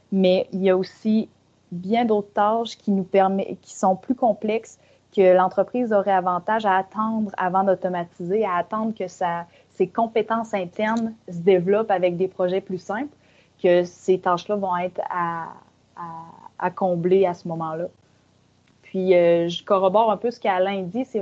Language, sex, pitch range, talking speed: French, female, 180-210 Hz, 160 wpm